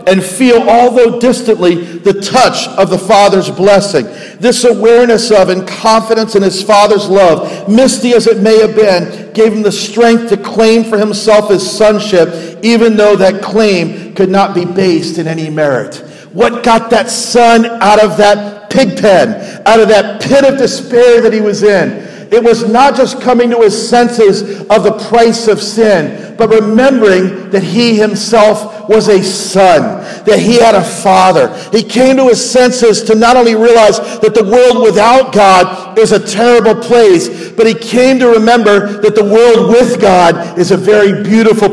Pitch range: 205-240 Hz